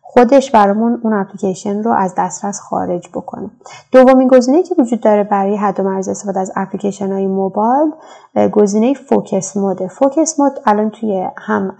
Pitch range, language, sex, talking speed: 195-240 Hz, Persian, female, 160 wpm